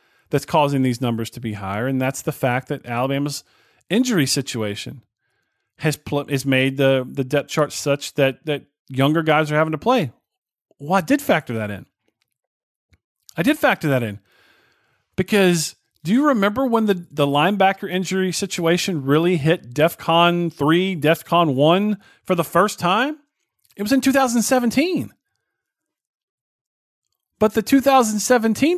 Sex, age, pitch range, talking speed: male, 40-59, 145-225 Hz, 145 wpm